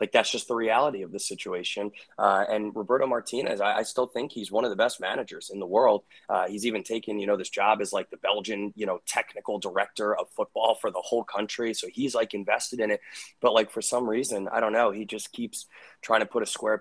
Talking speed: 245 wpm